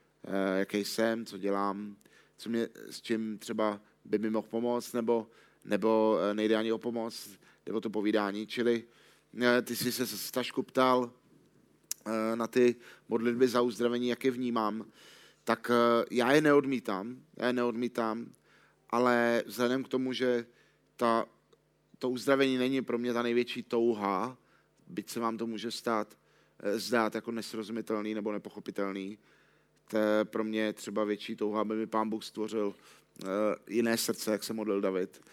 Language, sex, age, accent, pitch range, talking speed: Czech, male, 30-49, native, 105-120 Hz, 145 wpm